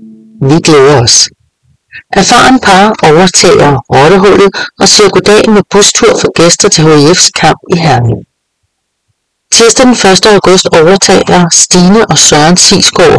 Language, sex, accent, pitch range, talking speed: English, female, Danish, 155-195 Hz, 125 wpm